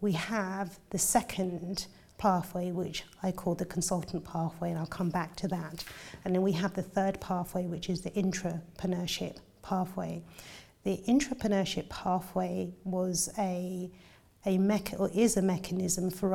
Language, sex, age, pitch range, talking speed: English, female, 40-59, 180-195 Hz, 130 wpm